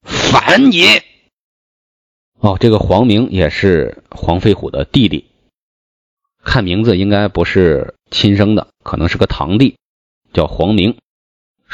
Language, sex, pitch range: Chinese, male, 80-115 Hz